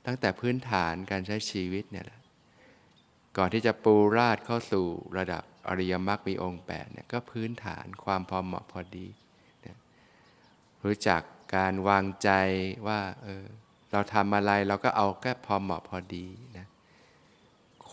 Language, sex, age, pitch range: Thai, male, 20-39, 95-110 Hz